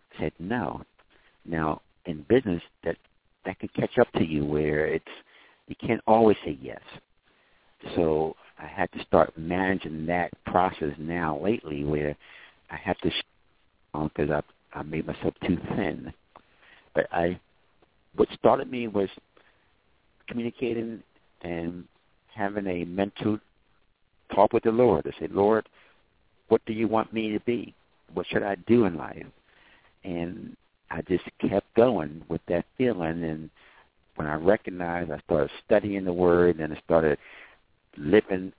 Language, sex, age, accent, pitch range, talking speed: English, male, 60-79, American, 80-100 Hz, 140 wpm